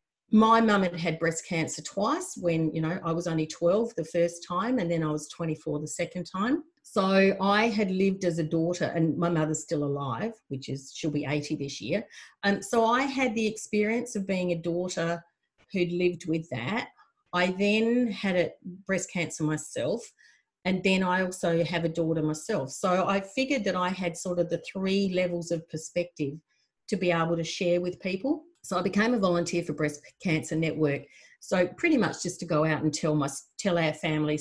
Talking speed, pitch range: 200 wpm, 155-195 Hz